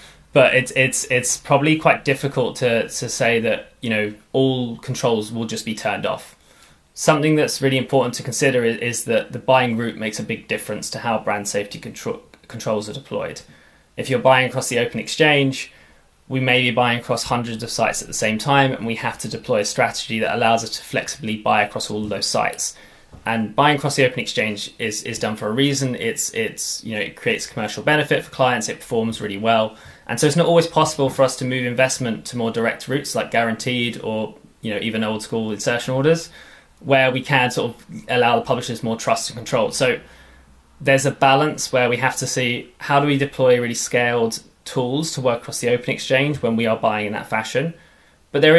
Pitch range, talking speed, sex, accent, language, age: 115-135 Hz, 215 wpm, male, British, English, 20-39